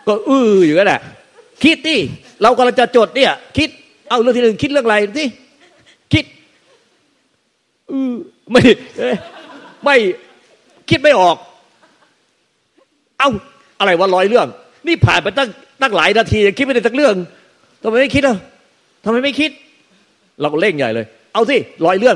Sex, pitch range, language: male, 165-250 Hz, Thai